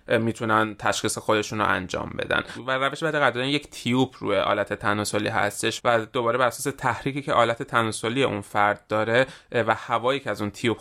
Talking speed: 185 wpm